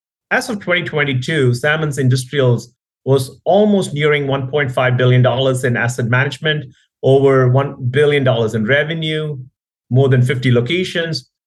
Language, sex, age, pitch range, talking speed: English, male, 30-49, 125-155 Hz, 115 wpm